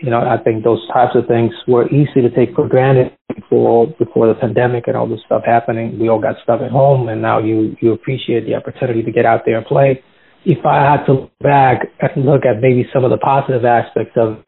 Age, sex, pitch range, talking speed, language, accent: 30-49, male, 125-145 Hz, 245 wpm, English, American